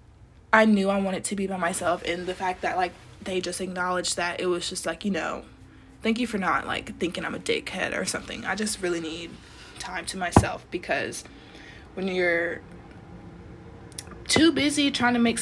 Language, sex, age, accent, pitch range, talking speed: English, female, 20-39, American, 185-225 Hz, 190 wpm